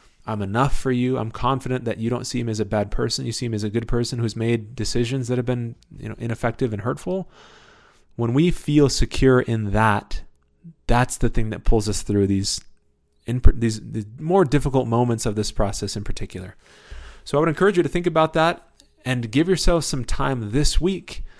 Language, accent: English, American